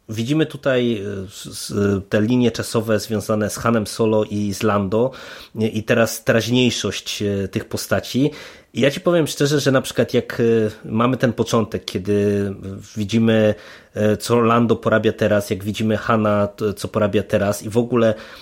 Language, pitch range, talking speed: Polish, 105-115 Hz, 140 wpm